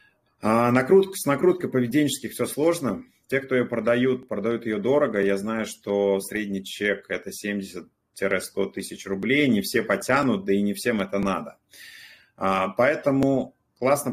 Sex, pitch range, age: male, 100-125 Hz, 30-49